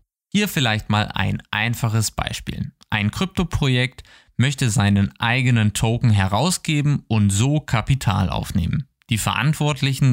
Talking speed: 115 wpm